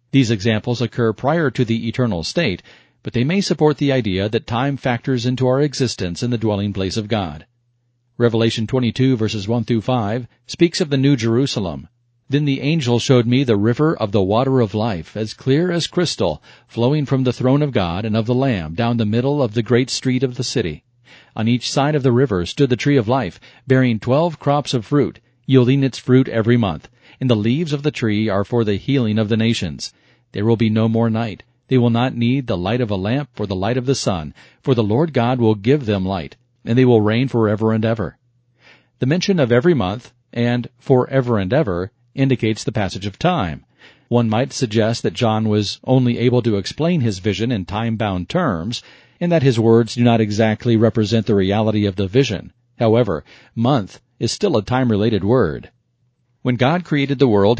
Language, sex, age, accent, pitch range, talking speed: English, male, 40-59, American, 110-130 Hz, 205 wpm